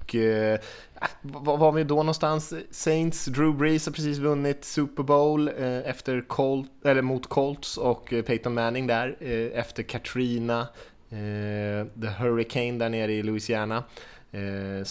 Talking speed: 140 wpm